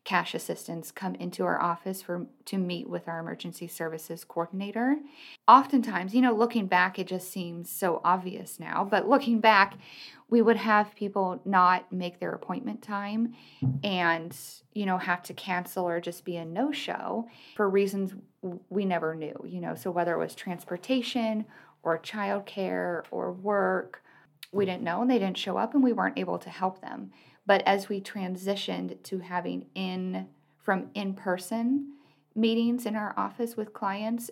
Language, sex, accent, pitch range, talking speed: English, female, American, 180-220 Hz, 165 wpm